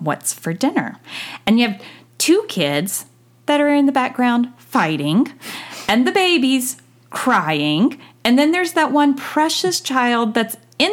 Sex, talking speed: female, 150 wpm